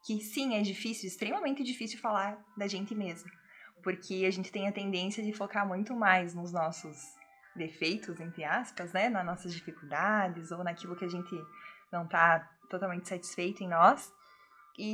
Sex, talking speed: female, 165 wpm